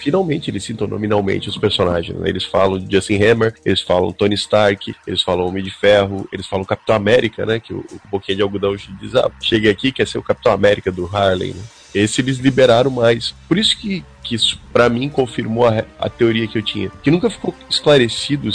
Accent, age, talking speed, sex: Brazilian, 20-39, 215 wpm, male